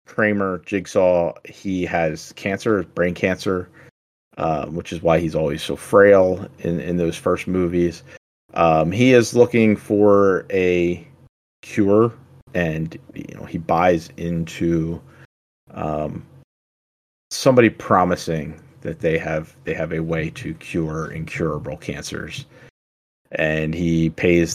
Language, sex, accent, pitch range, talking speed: English, male, American, 80-105 Hz, 120 wpm